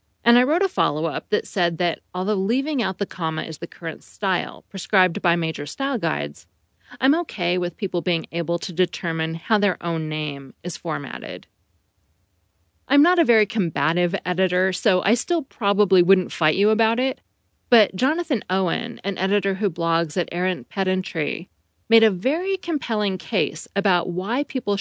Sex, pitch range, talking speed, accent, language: female, 165-220 Hz, 165 wpm, American, English